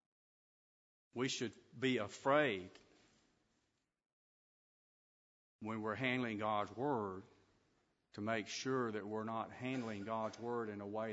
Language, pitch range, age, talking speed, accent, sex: English, 115-145 Hz, 50-69, 115 wpm, American, male